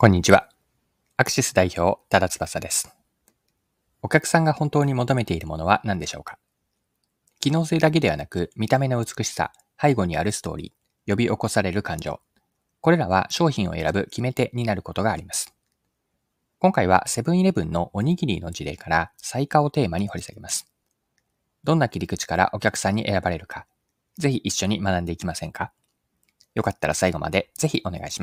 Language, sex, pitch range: Japanese, male, 90-140 Hz